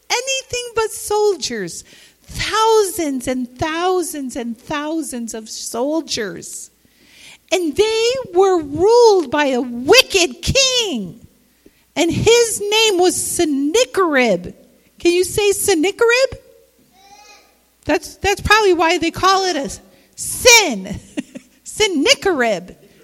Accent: American